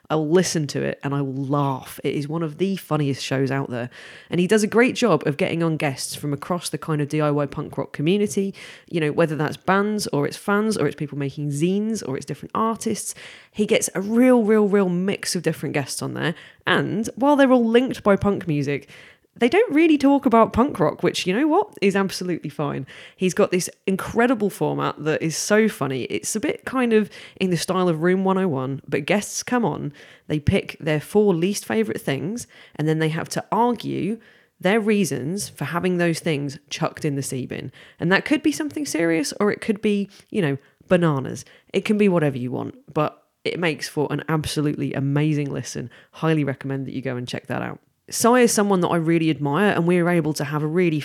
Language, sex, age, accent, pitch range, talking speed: English, female, 20-39, British, 145-195 Hz, 215 wpm